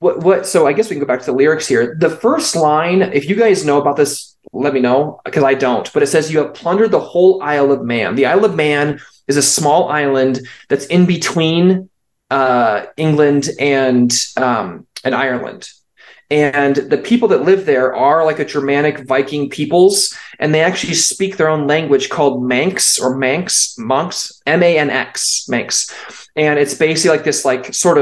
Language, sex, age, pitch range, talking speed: English, male, 20-39, 135-165 Hz, 190 wpm